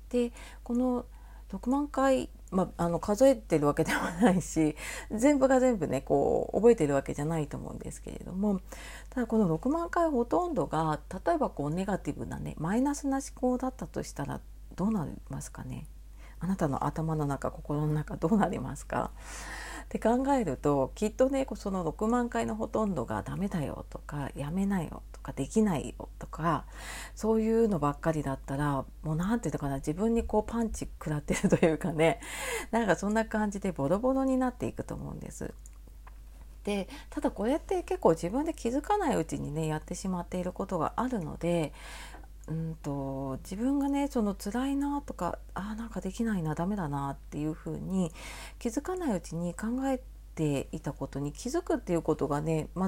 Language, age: Japanese, 40-59